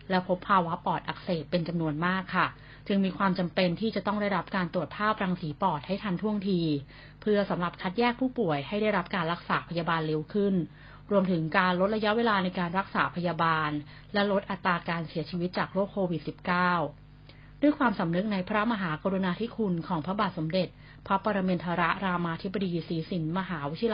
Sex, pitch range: female, 160-195 Hz